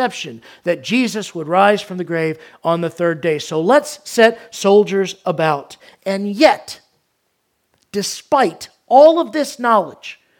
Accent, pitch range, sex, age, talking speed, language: American, 200-295 Hz, male, 50-69, 135 wpm, English